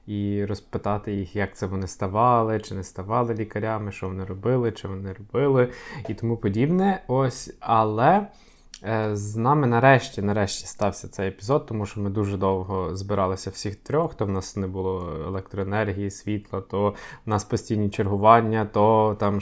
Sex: male